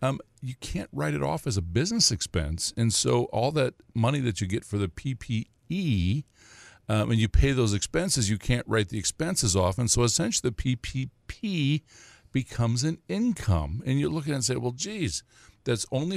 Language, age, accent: English, 50-69, American